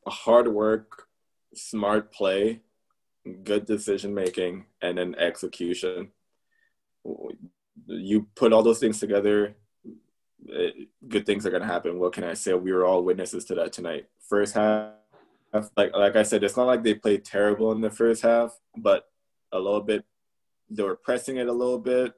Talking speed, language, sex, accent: 160 wpm, English, male, American